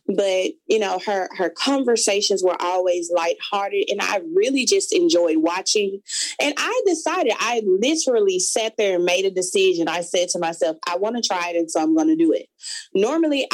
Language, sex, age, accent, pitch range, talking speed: English, female, 20-39, American, 175-265 Hz, 190 wpm